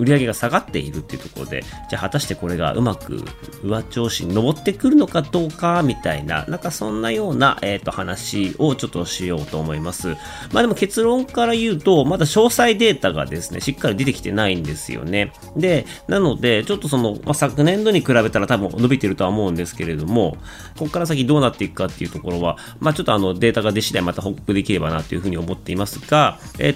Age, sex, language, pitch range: 30-49, male, Japanese, 95-145 Hz